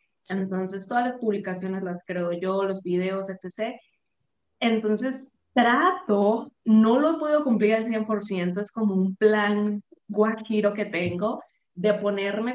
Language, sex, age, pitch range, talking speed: Spanish, female, 20-39, 185-235 Hz, 130 wpm